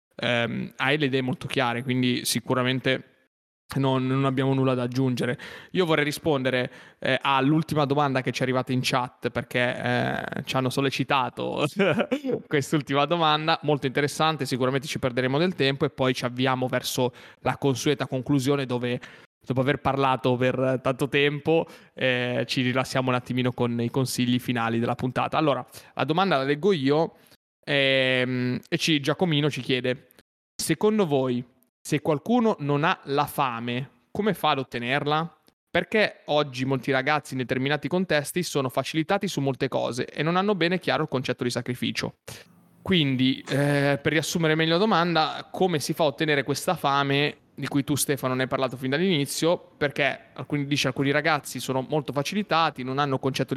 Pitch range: 130-155 Hz